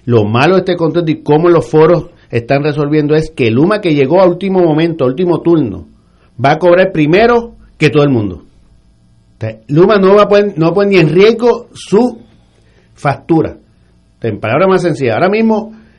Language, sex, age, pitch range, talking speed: Spanish, male, 50-69, 120-185 Hz, 175 wpm